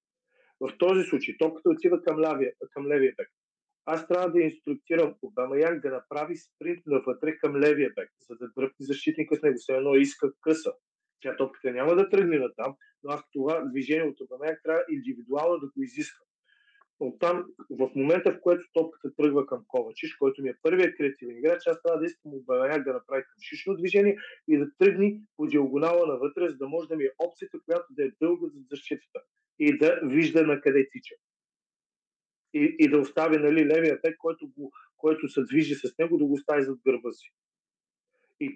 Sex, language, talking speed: male, Bulgarian, 190 wpm